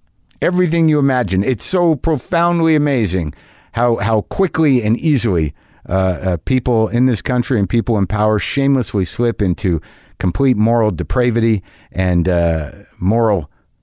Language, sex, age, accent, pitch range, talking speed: English, male, 50-69, American, 95-125 Hz, 135 wpm